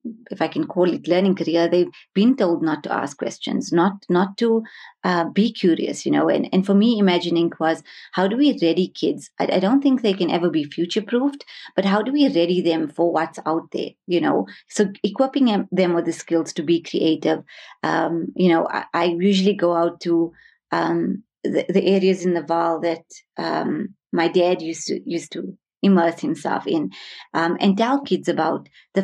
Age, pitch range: 30-49, 170-200 Hz